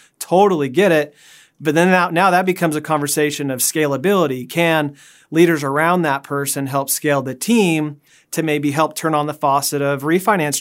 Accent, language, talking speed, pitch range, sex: American, English, 175 wpm, 140-170 Hz, male